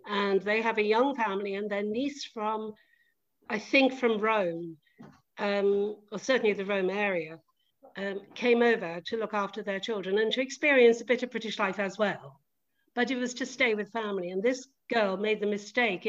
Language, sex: English, female